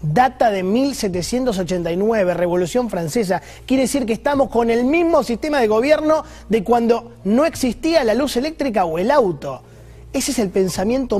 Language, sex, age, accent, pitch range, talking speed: Spanish, male, 30-49, Argentinian, 165-250 Hz, 155 wpm